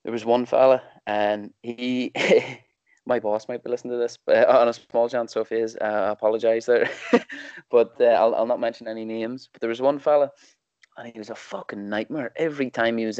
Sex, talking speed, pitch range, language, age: male, 215 wpm, 110-125 Hz, English, 20-39